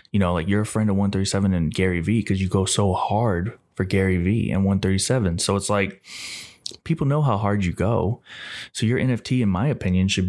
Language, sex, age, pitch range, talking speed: English, male, 20-39, 95-110 Hz, 215 wpm